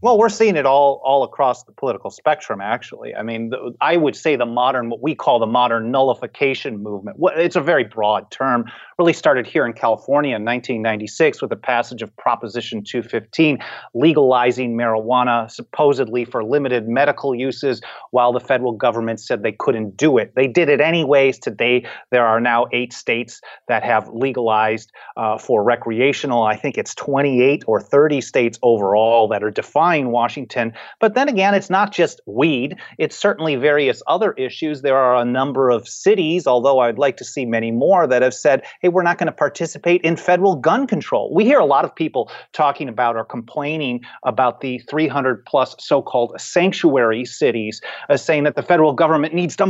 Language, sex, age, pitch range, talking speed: English, male, 30-49, 120-175 Hz, 185 wpm